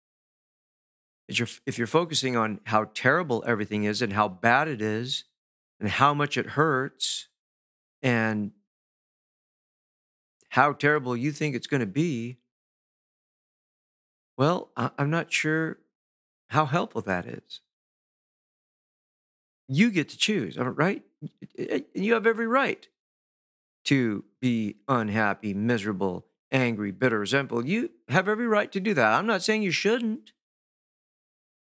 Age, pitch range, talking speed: 50-69, 110-145 Hz, 120 wpm